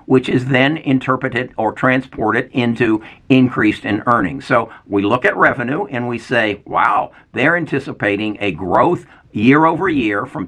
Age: 60-79